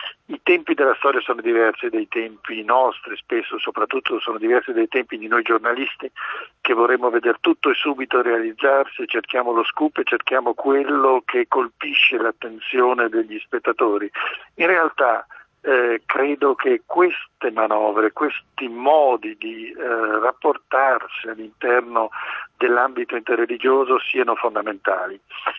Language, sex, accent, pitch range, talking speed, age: Italian, male, native, 115-180 Hz, 125 wpm, 50-69